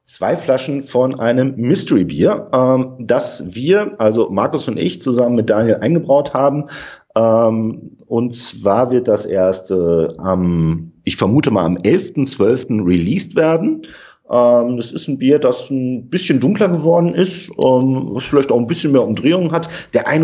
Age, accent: 40-59, German